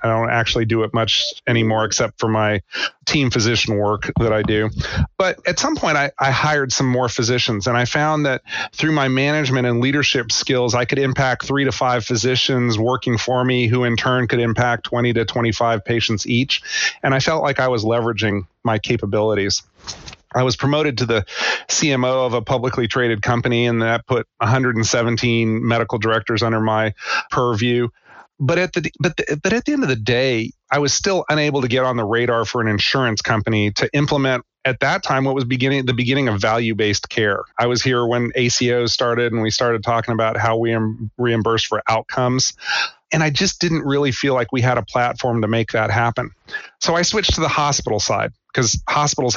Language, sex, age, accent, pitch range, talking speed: English, male, 40-59, American, 115-135 Hz, 200 wpm